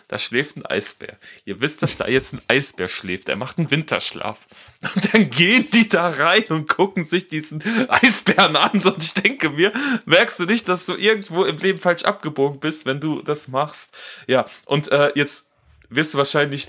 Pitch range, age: 115-175 Hz, 20-39